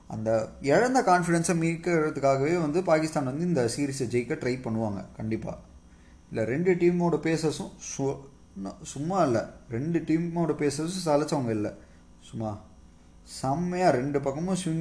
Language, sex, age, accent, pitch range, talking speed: Tamil, male, 20-39, native, 120-170 Hz, 120 wpm